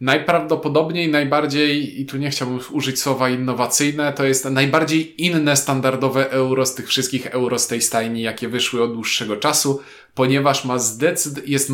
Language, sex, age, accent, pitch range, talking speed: Polish, male, 20-39, native, 125-155 Hz, 150 wpm